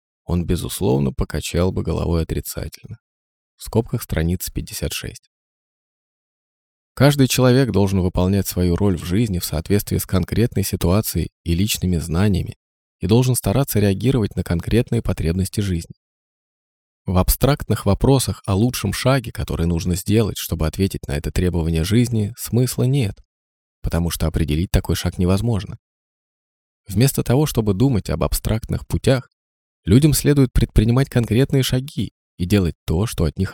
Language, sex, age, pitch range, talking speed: Russian, male, 20-39, 85-115 Hz, 135 wpm